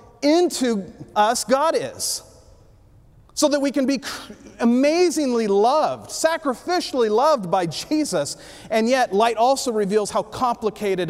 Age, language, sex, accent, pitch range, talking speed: 40-59, English, male, American, 185-245 Hz, 120 wpm